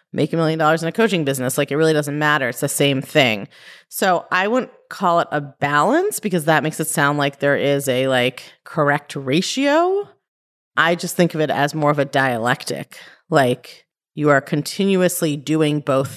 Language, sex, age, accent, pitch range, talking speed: English, female, 30-49, American, 145-195 Hz, 195 wpm